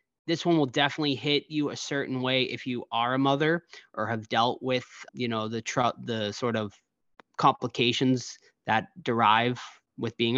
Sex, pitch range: male, 125-180 Hz